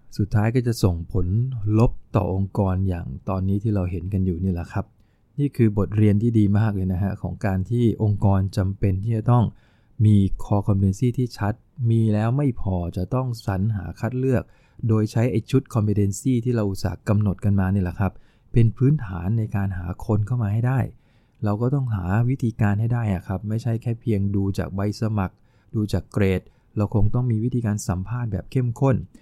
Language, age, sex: English, 20-39, male